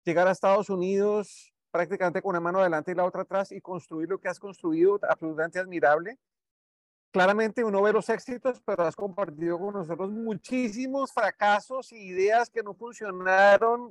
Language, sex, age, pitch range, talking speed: Spanish, male, 40-59, 175-215 Hz, 165 wpm